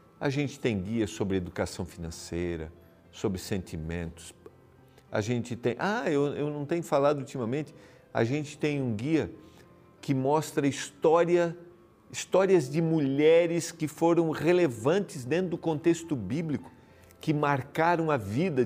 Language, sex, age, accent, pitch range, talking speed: Portuguese, male, 50-69, Brazilian, 110-150 Hz, 130 wpm